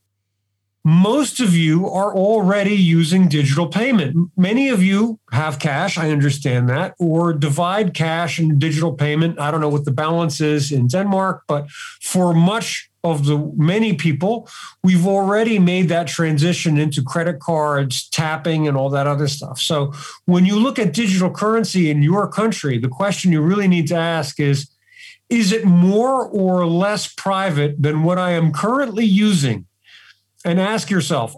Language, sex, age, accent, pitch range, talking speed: Danish, male, 50-69, American, 145-190 Hz, 165 wpm